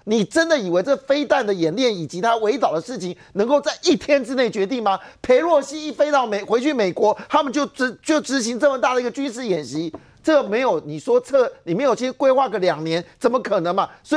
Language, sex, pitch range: Chinese, male, 215-285 Hz